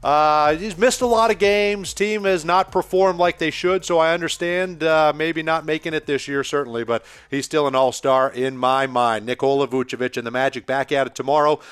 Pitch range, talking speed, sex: 125-160 Hz, 215 wpm, male